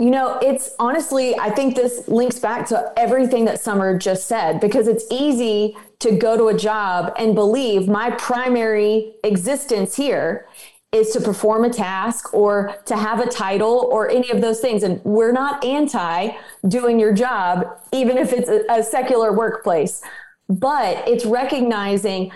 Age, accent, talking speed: 30-49, American, 165 wpm